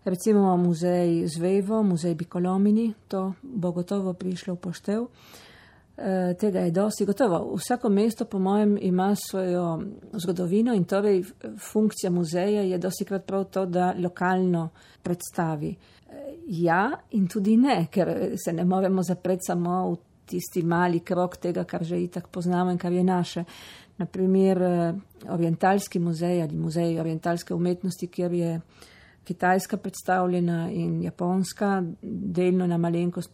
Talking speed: 135 wpm